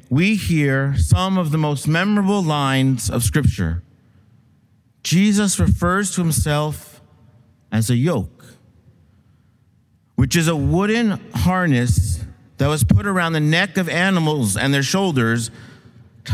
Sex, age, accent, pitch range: male, 50-69, American, 115-165 Hz